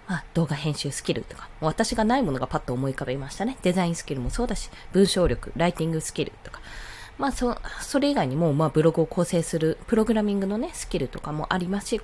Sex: female